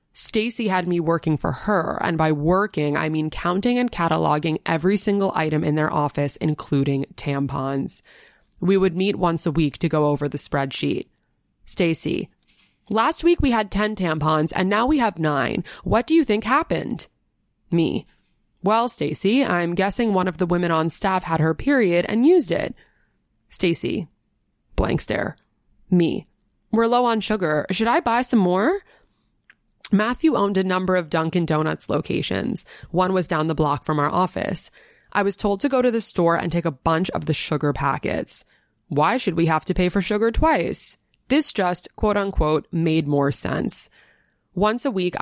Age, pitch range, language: 20-39, 155-205 Hz, English